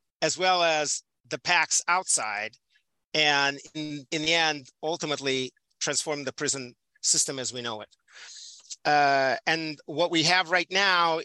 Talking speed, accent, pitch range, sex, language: 145 wpm, American, 140-165 Hz, male, English